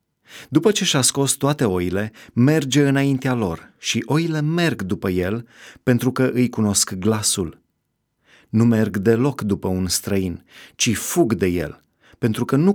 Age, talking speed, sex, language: 30-49, 150 wpm, male, Romanian